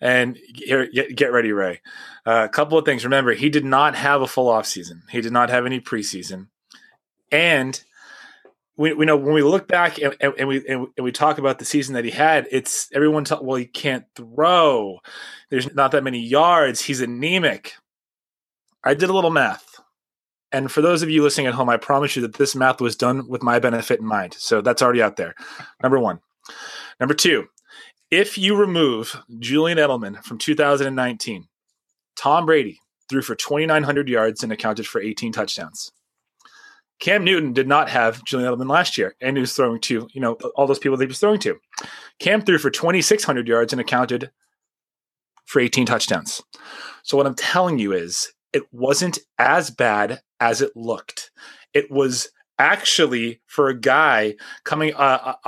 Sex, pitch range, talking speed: male, 125-155 Hz, 180 wpm